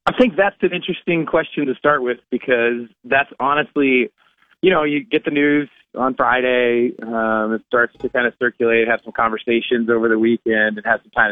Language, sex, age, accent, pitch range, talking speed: English, male, 30-49, American, 120-145 Hz, 195 wpm